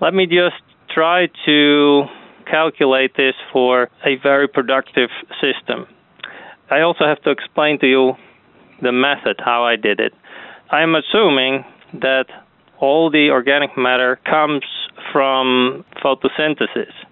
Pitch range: 125-145 Hz